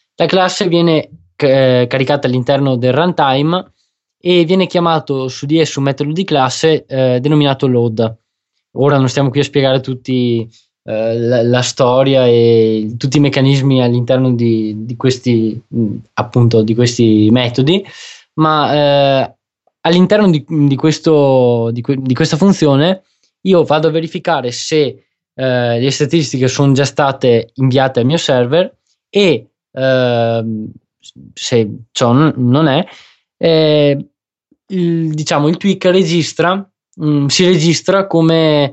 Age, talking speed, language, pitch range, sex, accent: 20-39, 120 wpm, Italian, 125-160 Hz, male, native